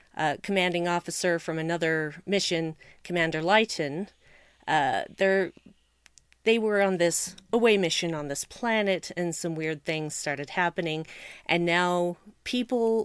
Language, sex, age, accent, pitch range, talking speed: English, female, 40-59, American, 160-205 Hz, 130 wpm